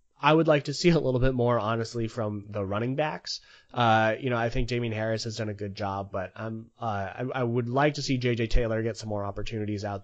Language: English